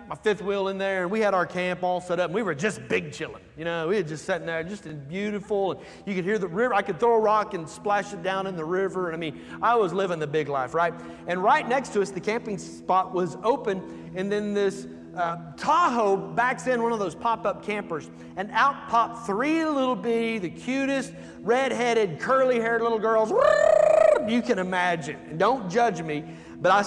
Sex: male